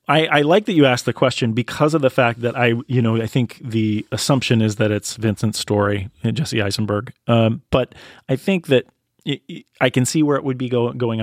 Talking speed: 220 wpm